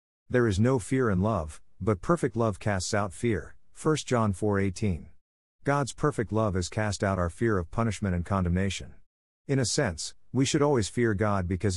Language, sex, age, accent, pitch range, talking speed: English, male, 50-69, American, 90-115 Hz, 185 wpm